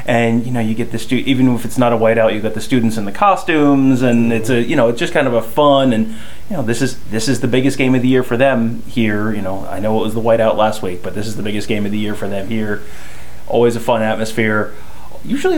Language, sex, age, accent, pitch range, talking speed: English, male, 30-49, American, 110-125 Hz, 285 wpm